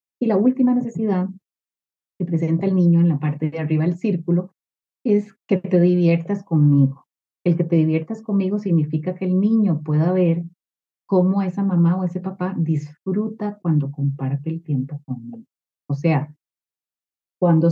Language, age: Spanish, 30-49